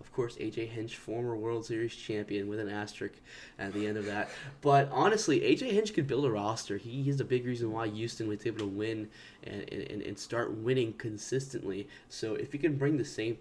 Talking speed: 215 wpm